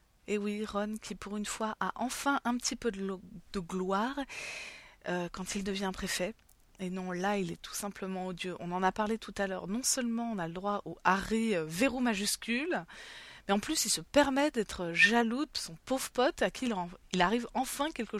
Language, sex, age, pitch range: French, female, 20-39, 185-240 Hz